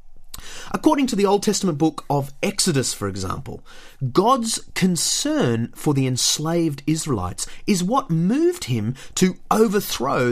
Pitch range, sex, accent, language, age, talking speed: 130-200 Hz, male, Australian, English, 30-49, 130 wpm